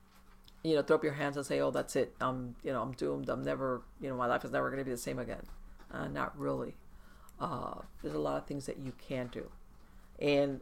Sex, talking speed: female, 250 wpm